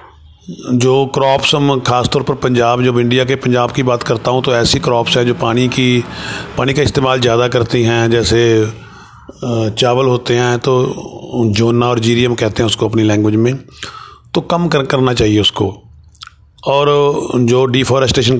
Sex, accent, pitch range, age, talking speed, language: male, native, 115-135 Hz, 30-49, 160 wpm, Hindi